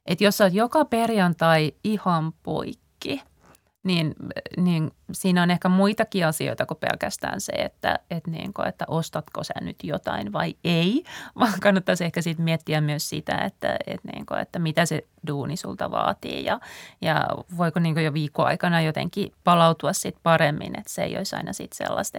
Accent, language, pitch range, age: native, Finnish, 165-200 Hz, 30-49